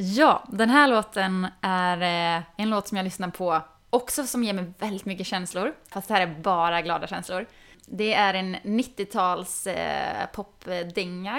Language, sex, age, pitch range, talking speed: Swedish, female, 20-39, 175-205 Hz, 160 wpm